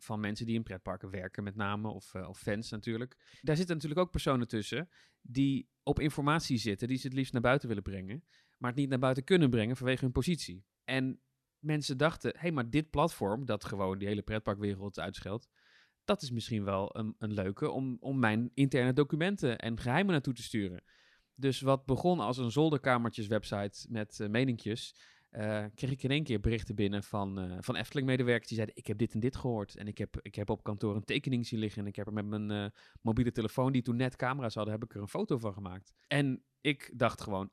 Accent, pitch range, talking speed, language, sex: Dutch, 105-130 Hz, 220 wpm, Dutch, male